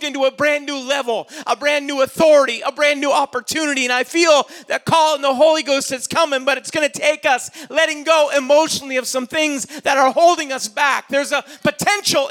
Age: 40-59